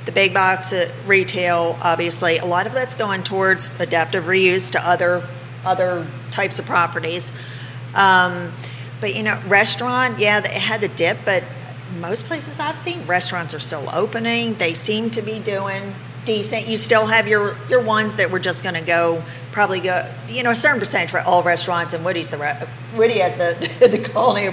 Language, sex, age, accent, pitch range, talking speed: English, female, 40-59, American, 150-195 Hz, 185 wpm